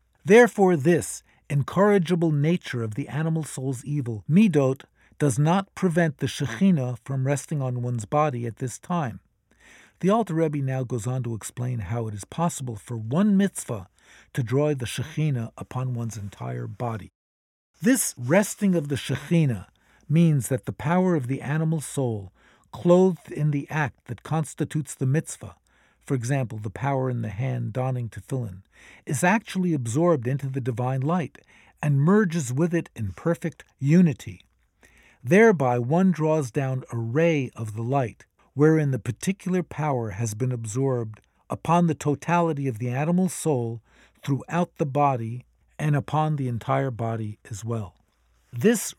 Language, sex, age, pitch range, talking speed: English, male, 50-69, 120-165 Hz, 150 wpm